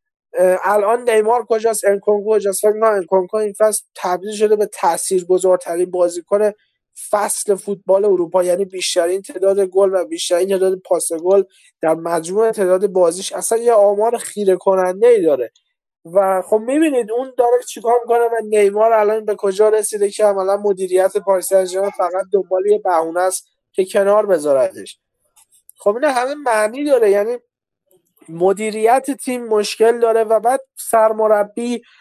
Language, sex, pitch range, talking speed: Persian, male, 190-225 Hz, 145 wpm